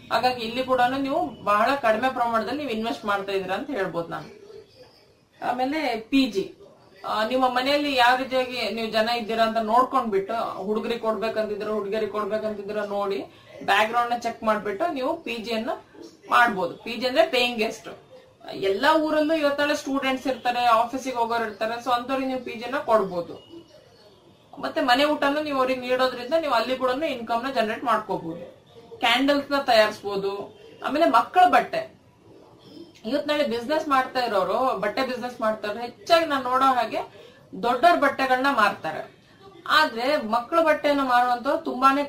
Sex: female